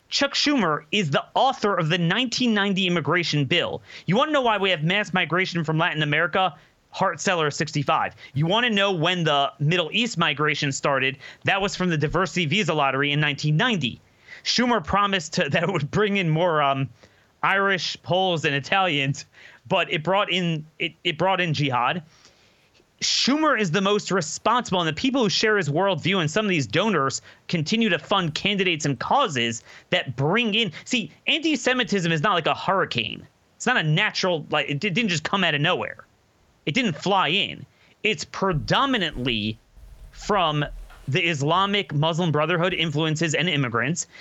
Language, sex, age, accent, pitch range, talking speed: English, male, 30-49, American, 150-200 Hz, 170 wpm